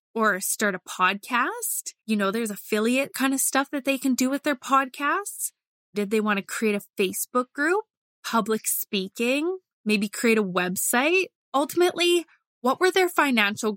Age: 20-39